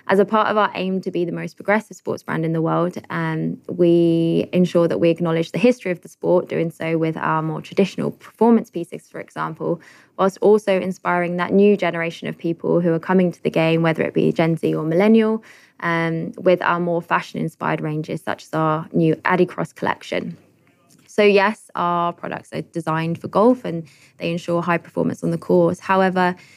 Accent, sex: British, female